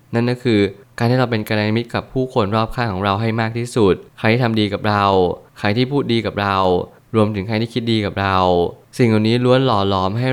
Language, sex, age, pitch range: Thai, male, 20-39, 100-120 Hz